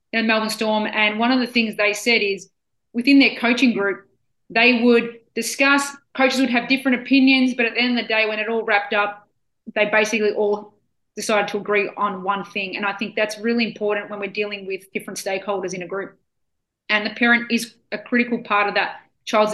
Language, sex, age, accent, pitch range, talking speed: English, female, 30-49, Australian, 205-240 Hz, 210 wpm